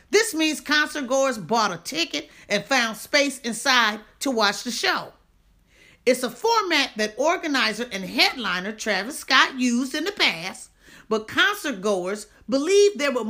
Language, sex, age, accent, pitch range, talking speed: English, female, 40-59, American, 220-310 Hz, 145 wpm